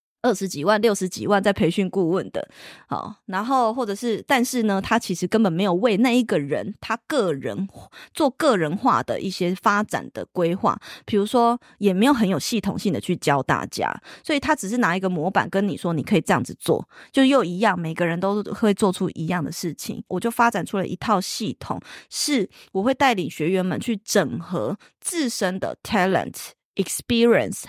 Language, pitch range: Chinese, 180-235 Hz